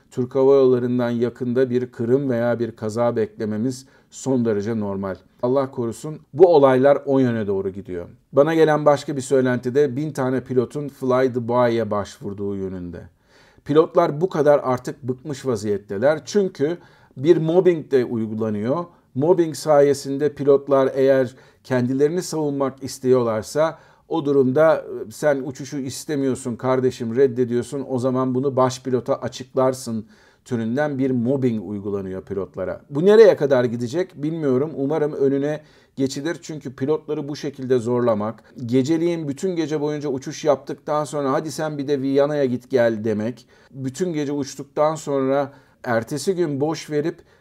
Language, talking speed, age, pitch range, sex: Turkish, 135 wpm, 50-69, 125-150 Hz, male